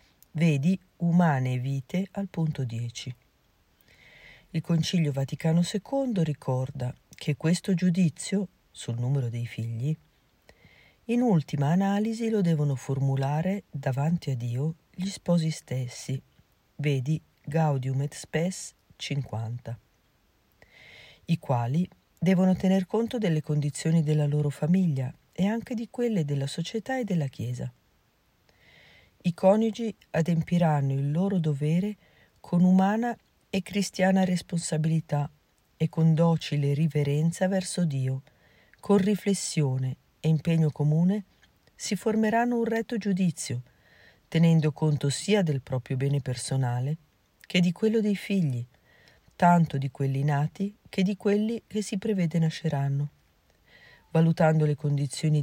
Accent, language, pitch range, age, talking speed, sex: native, Italian, 140-185 Hz, 40-59, 115 wpm, female